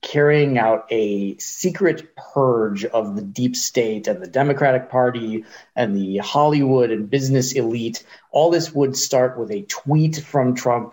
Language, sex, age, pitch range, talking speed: English, male, 30-49, 115-150 Hz, 155 wpm